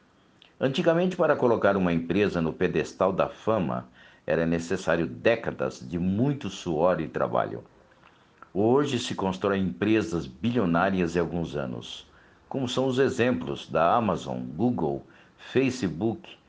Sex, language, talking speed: male, Portuguese, 120 wpm